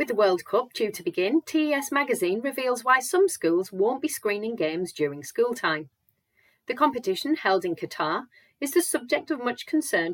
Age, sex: 40-59, female